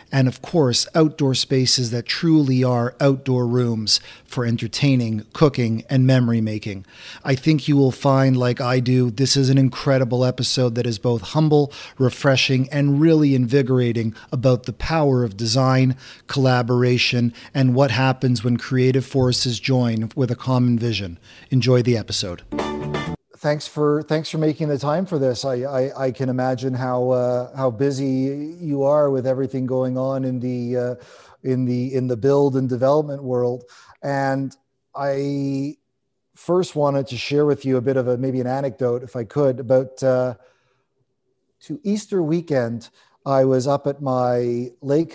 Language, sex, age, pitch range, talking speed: English, male, 40-59, 125-140 Hz, 160 wpm